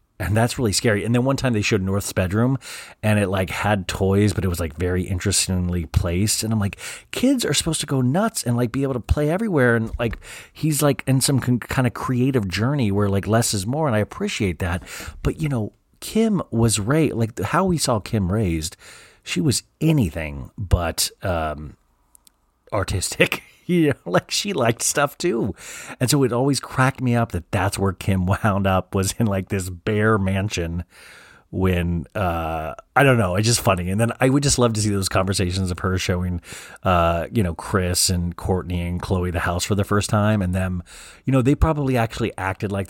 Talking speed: 205 wpm